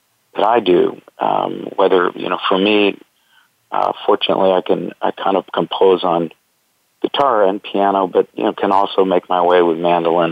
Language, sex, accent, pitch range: English, male, American, 90-110 Hz